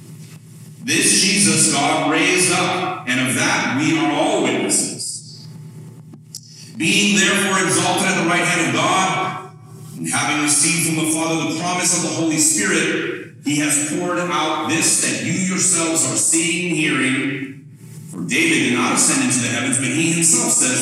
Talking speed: 165 wpm